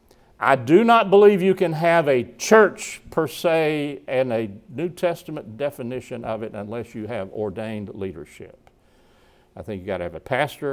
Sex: male